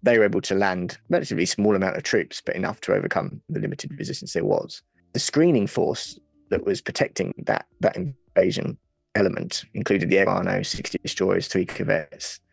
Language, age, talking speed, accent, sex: English, 20-39, 175 wpm, British, male